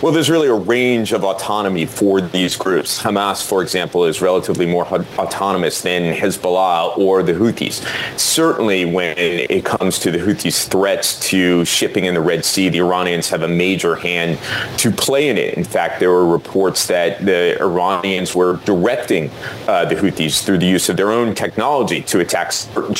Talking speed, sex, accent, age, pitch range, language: 180 wpm, male, American, 30-49, 90-115 Hz, English